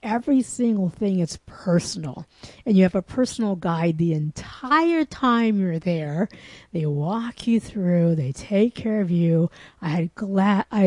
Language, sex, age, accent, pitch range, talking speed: English, female, 50-69, American, 170-220 Hz, 165 wpm